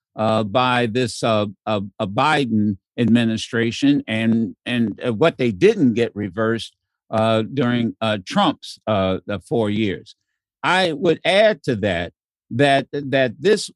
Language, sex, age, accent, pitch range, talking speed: English, male, 60-79, American, 115-170 Hz, 120 wpm